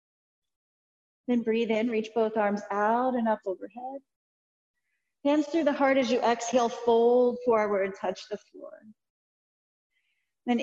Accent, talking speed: American, 125 wpm